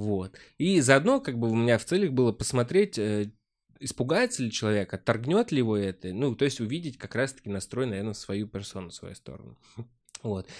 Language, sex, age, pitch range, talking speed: Russian, male, 20-39, 100-130 Hz, 180 wpm